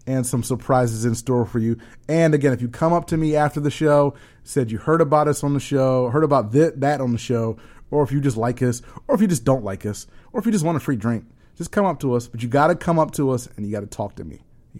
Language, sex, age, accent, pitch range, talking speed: English, male, 30-49, American, 115-145 Hz, 300 wpm